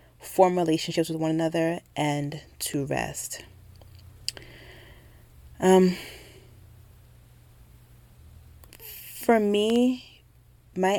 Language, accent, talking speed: English, American, 65 wpm